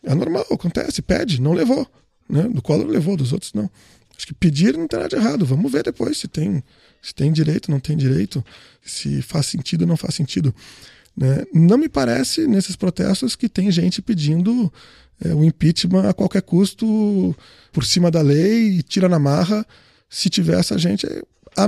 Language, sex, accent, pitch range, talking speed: Portuguese, male, Brazilian, 140-205 Hz, 190 wpm